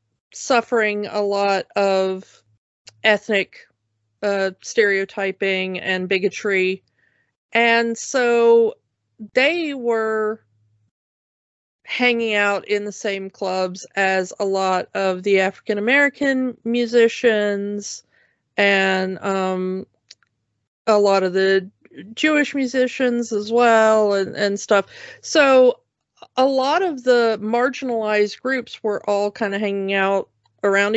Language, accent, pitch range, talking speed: English, American, 190-230 Hz, 105 wpm